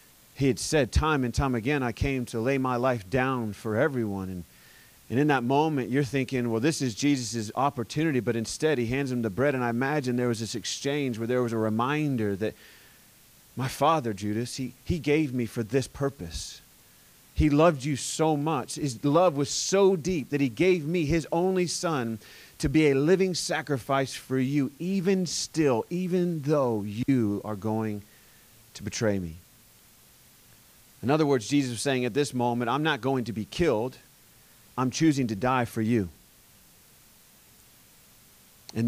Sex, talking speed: male, 175 wpm